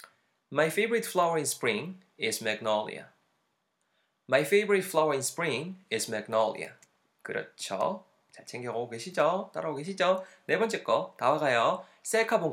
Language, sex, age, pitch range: Korean, male, 20-39, 115-185 Hz